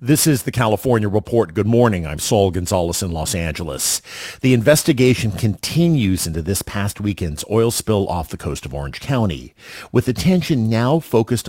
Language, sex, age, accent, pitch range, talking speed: English, male, 50-69, American, 80-110 Hz, 165 wpm